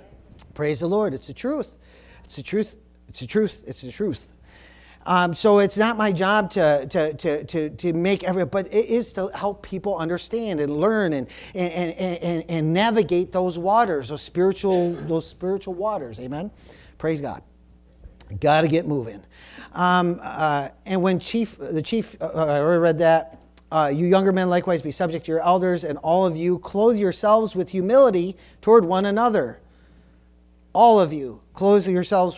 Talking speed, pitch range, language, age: 175 wpm, 150-195 Hz, English, 40-59